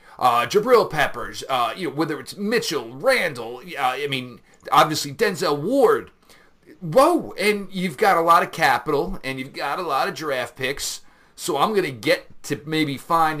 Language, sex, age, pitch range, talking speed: English, male, 40-59, 130-170 Hz, 175 wpm